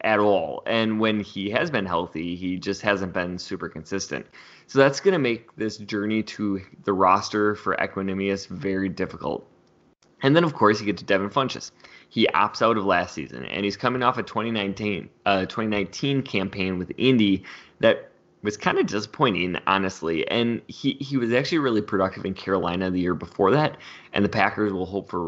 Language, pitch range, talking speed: English, 95-120 Hz, 190 wpm